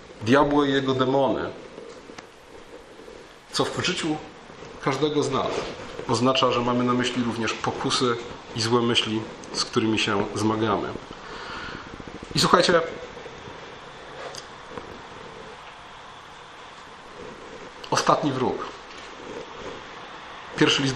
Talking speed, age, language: 85 wpm, 40-59, Polish